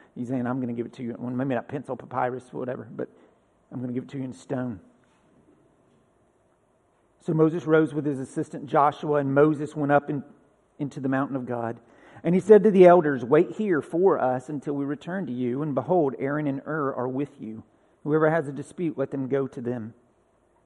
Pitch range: 130-170 Hz